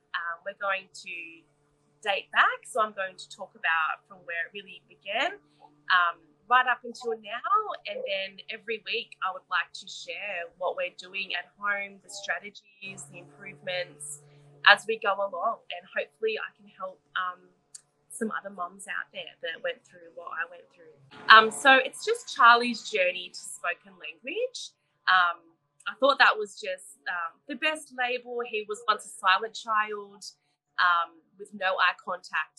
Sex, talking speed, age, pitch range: female, 170 wpm, 20-39, 165-230 Hz